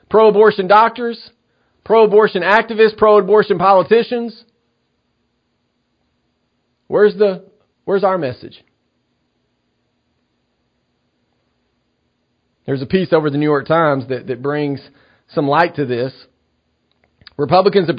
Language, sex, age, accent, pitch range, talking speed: English, male, 40-59, American, 135-190 Hz, 95 wpm